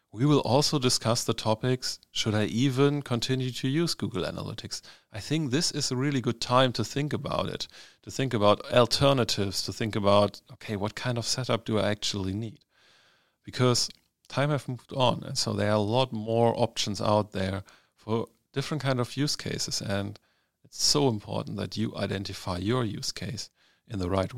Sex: male